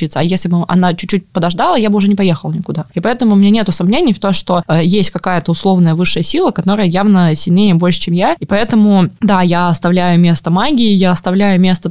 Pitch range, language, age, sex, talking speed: 160-195 Hz, Russian, 20-39, female, 210 wpm